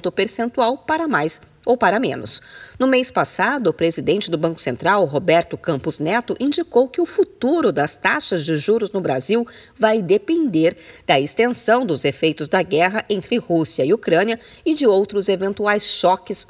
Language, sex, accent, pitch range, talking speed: Portuguese, female, Brazilian, 175-255 Hz, 160 wpm